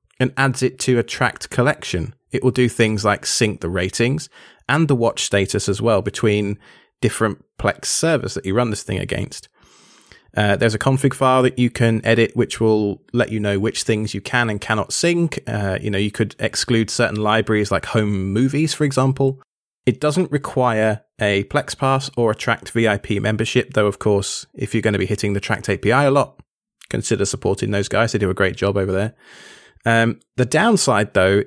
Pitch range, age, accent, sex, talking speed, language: 105-130 Hz, 20-39, British, male, 200 wpm, English